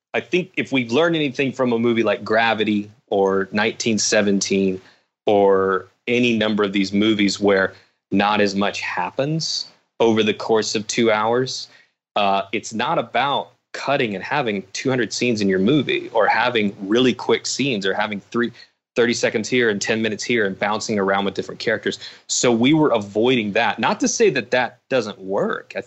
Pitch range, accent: 100-120 Hz, American